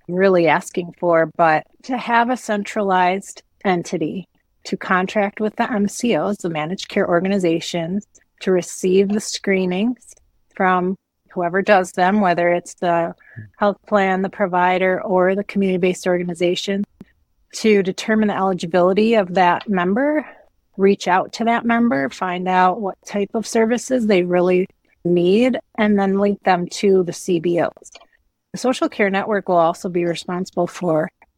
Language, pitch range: English, 180-210 Hz